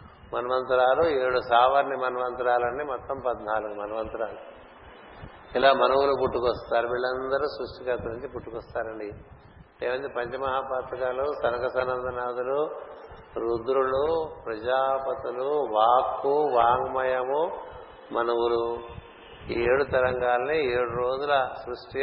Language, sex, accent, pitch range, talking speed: Telugu, male, native, 125-135 Hz, 80 wpm